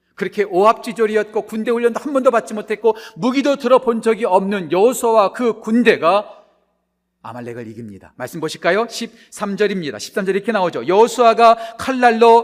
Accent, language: native, Korean